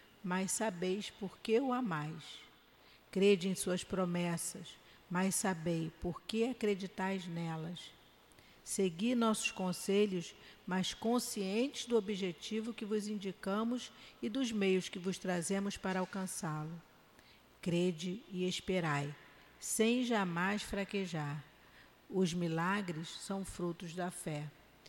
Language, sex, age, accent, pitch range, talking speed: Portuguese, female, 50-69, Brazilian, 165-195 Hz, 110 wpm